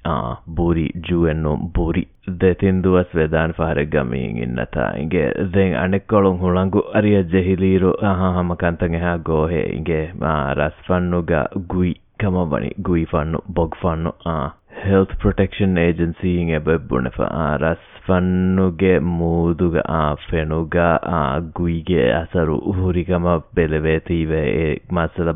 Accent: Indian